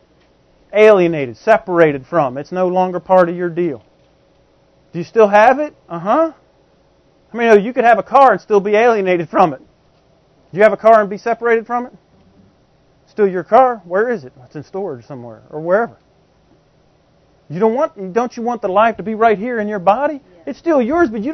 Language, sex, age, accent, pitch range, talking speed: English, male, 40-59, American, 185-240 Hz, 200 wpm